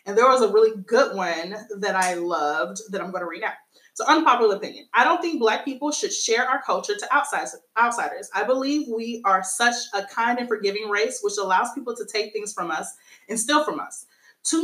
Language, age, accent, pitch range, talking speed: English, 30-49, American, 205-270 Hz, 220 wpm